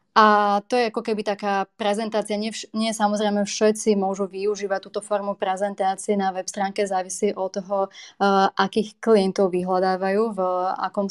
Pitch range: 195-220 Hz